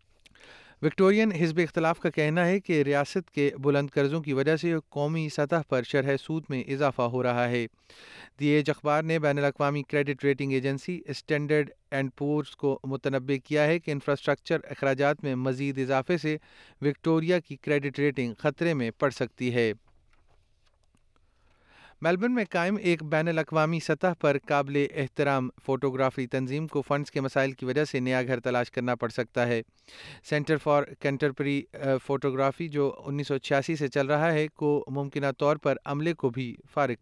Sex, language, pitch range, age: male, Urdu, 135-155 Hz, 30-49